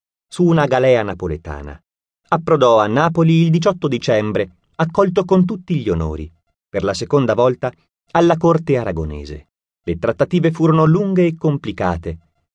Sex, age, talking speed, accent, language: male, 30-49, 135 wpm, native, Italian